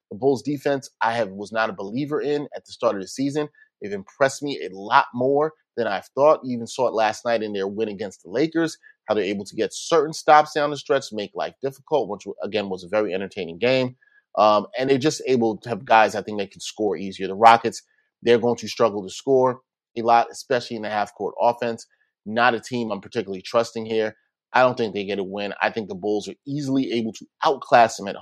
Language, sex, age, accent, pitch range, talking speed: English, male, 30-49, American, 110-140 Hz, 235 wpm